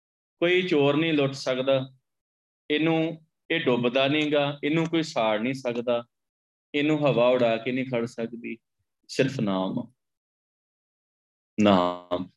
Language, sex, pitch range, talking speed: Punjabi, male, 105-145 Hz, 115 wpm